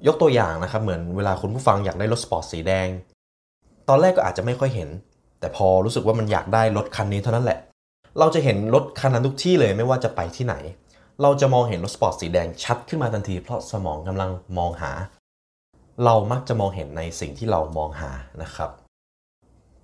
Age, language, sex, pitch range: 20-39, Thai, male, 85-115 Hz